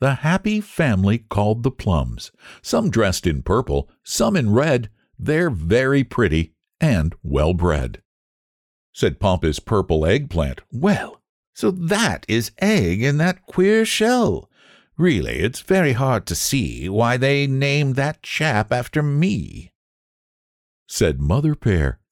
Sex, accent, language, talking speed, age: male, American, English, 130 wpm, 60-79